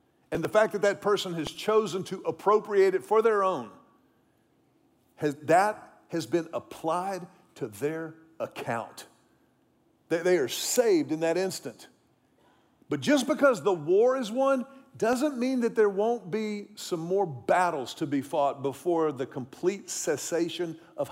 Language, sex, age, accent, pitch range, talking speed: English, male, 50-69, American, 165-235 Hz, 150 wpm